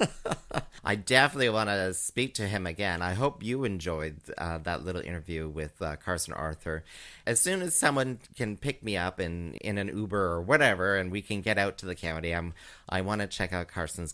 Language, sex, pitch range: English, male, 85-120 Hz